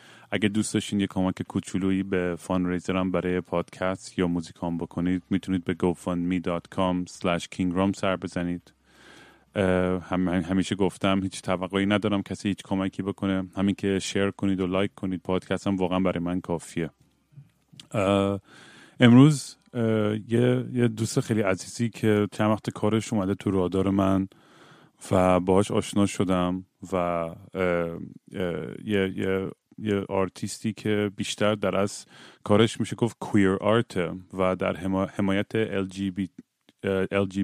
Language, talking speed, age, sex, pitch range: Persian, 130 wpm, 30-49, male, 95-105 Hz